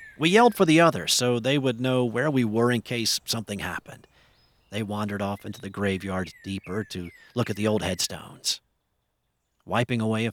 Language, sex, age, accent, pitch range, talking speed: English, male, 40-59, American, 105-135 Hz, 185 wpm